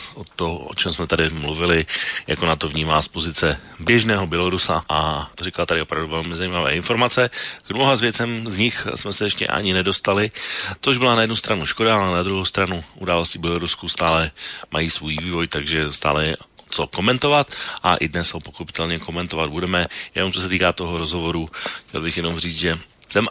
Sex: male